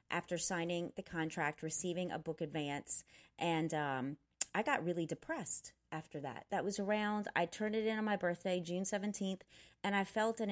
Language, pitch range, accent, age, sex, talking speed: English, 155-195 Hz, American, 30-49, female, 185 wpm